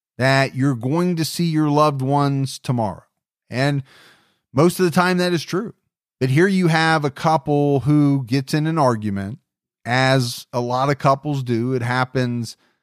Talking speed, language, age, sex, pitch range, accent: 170 wpm, English, 30-49, male, 130-165 Hz, American